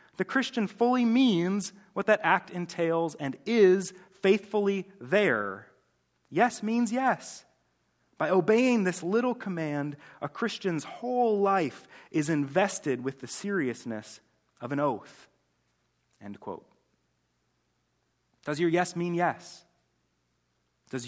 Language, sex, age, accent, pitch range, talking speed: English, male, 30-49, American, 125-185 Hz, 115 wpm